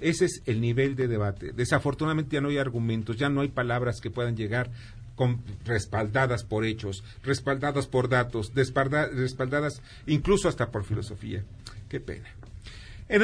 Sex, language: male, Spanish